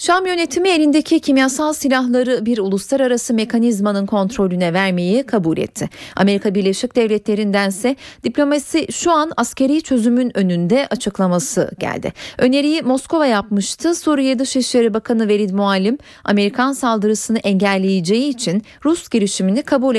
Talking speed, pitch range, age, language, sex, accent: 115 wpm, 195-265 Hz, 30-49, Turkish, female, native